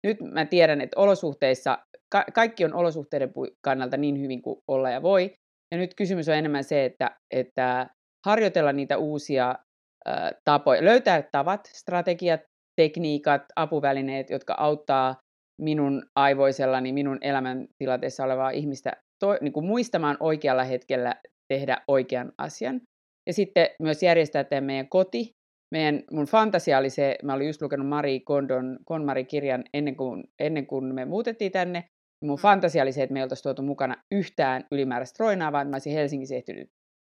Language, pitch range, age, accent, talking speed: Finnish, 135-175 Hz, 30-49, native, 145 wpm